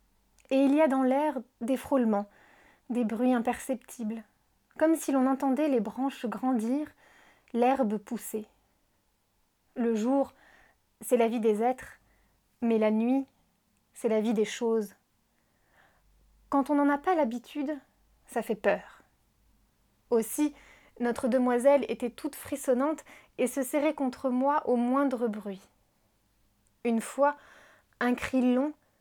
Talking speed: 130 wpm